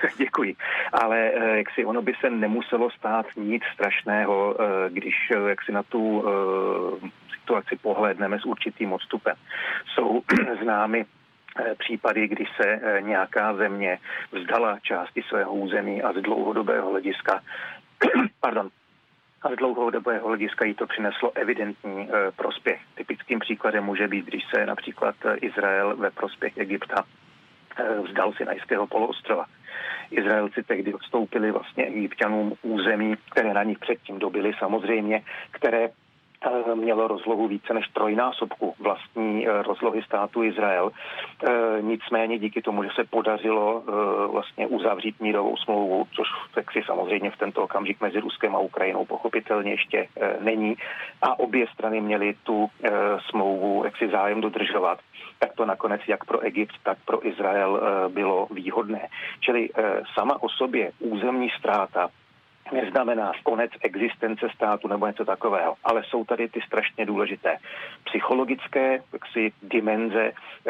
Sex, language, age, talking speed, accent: male, Czech, 40-59, 120 wpm, native